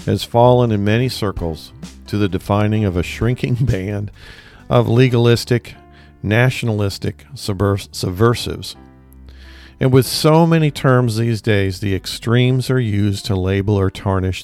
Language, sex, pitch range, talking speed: English, male, 95-125 Hz, 130 wpm